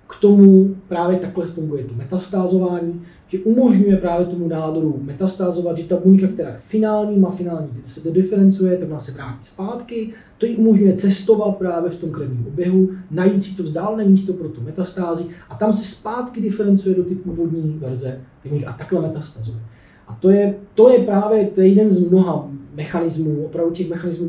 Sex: male